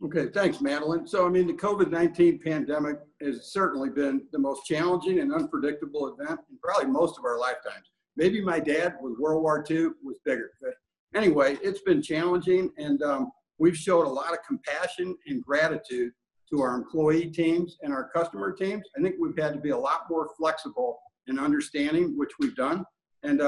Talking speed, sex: 180 wpm, male